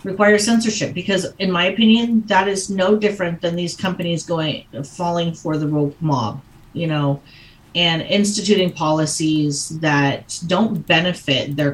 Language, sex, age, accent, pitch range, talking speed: English, female, 40-59, American, 140-190 Hz, 145 wpm